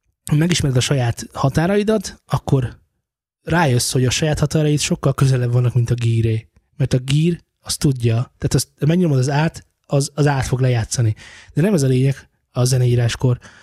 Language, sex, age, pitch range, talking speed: Hungarian, male, 20-39, 120-140 Hz, 170 wpm